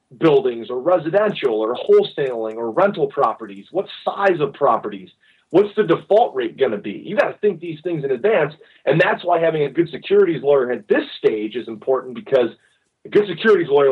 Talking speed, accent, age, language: 195 wpm, American, 30-49, English